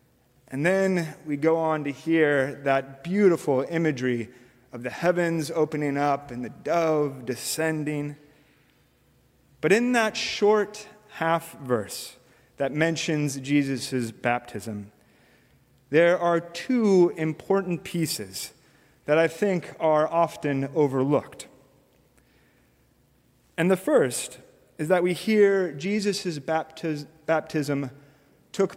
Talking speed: 105 wpm